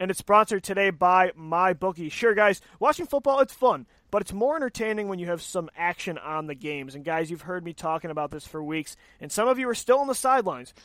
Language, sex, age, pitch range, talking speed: English, male, 30-49, 165-195 Hz, 245 wpm